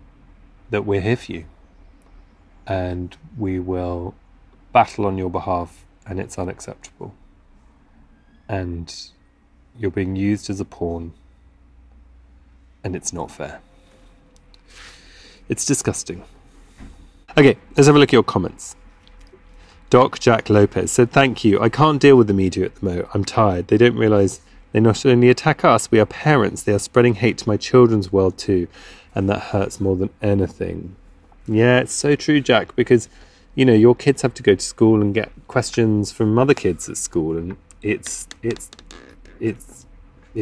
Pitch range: 85-115 Hz